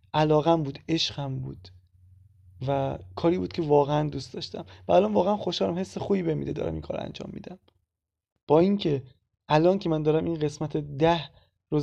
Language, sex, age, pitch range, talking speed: Persian, male, 20-39, 140-170 Hz, 165 wpm